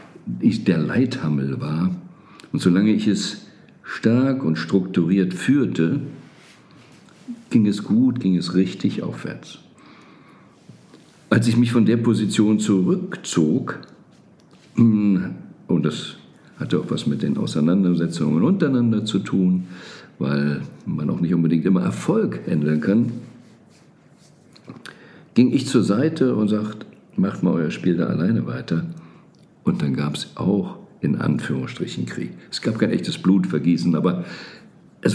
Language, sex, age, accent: German, male, 50-69, German